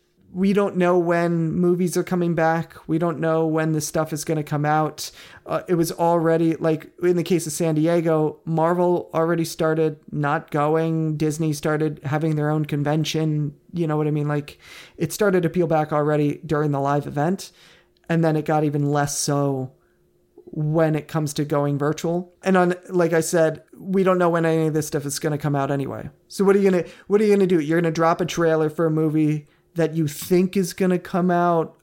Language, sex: English, male